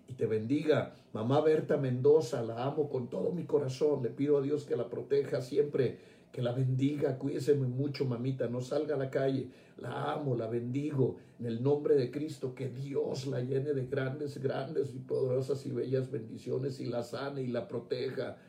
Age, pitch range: 50-69, 135-165 Hz